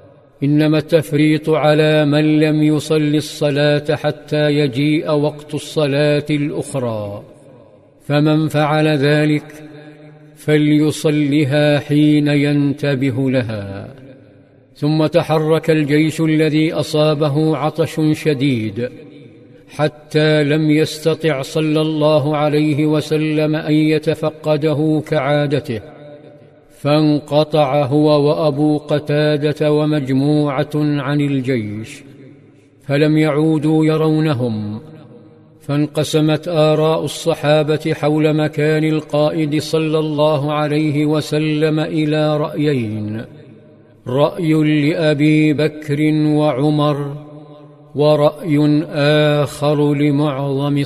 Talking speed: 75 wpm